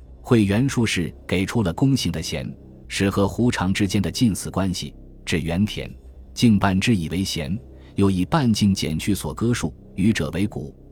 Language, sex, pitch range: Chinese, male, 80-110 Hz